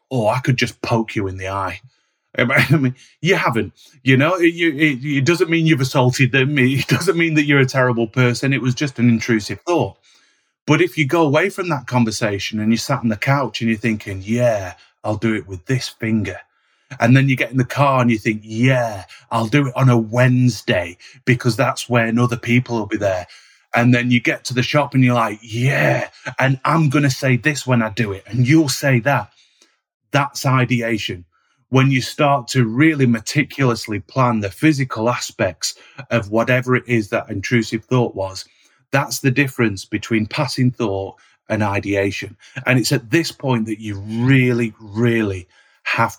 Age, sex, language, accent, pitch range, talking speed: 30-49, male, English, British, 115-140 Hz, 190 wpm